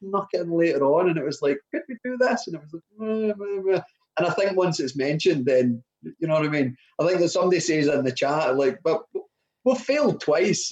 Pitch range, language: 125-185 Hz, English